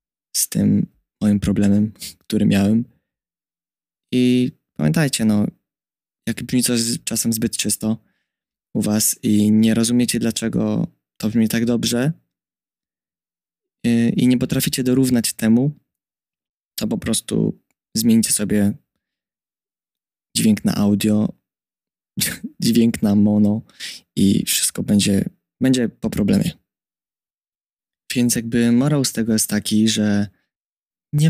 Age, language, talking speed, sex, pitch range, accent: 20-39, Polish, 110 wpm, male, 110-135 Hz, native